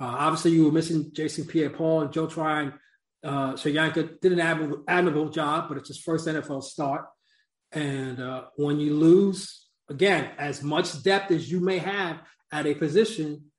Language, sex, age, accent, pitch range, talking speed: English, male, 30-49, American, 145-170 Hz, 170 wpm